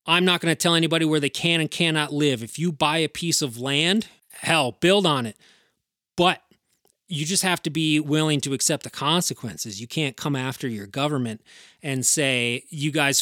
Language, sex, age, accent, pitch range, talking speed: English, male, 30-49, American, 135-160 Hz, 200 wpm